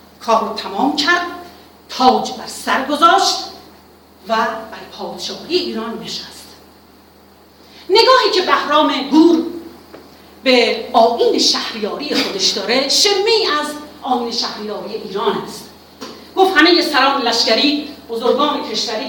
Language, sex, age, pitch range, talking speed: Persian, female, 40-59, 230-340 Hz, 105 wpm